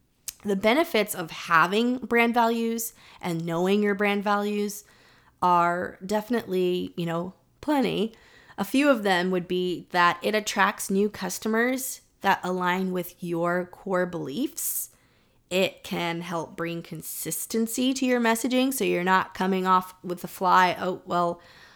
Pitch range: 175-210 Hz